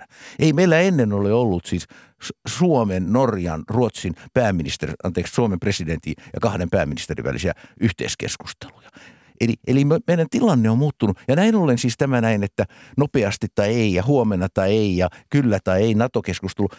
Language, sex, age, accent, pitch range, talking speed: Finnish, male, 60-79, native, 100-145 Hz, 155 wpm